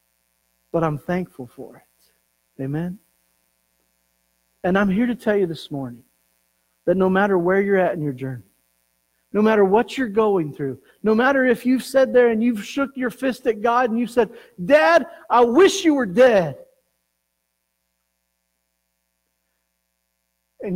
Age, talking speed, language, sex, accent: 50-69, 150 wpm, English, male, American